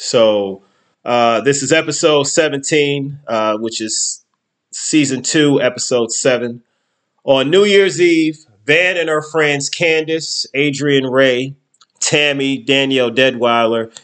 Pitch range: 130-155 Hz